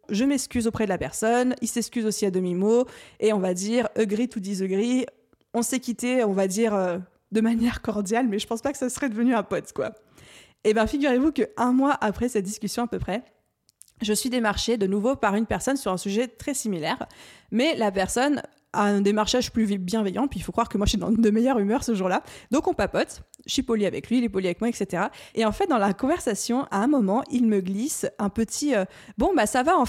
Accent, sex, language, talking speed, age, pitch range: French, female, French, 245 wpm, 20-39, 200-255 Hz